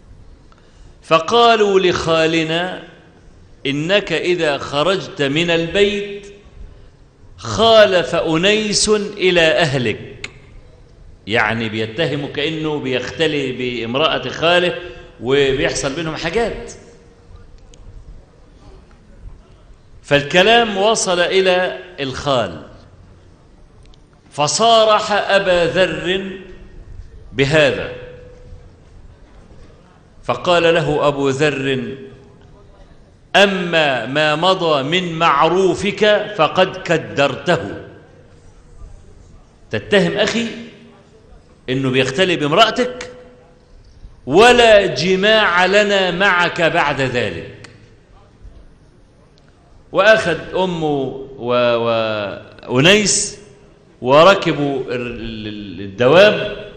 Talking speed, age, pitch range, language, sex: 60 wpm, 50-69, 125-190 Hz, Arabic, male